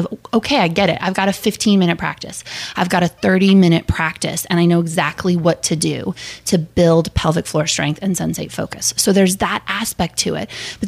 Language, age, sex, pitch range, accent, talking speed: English, 20-39, female, 165-200 Hz, American, 205 wpm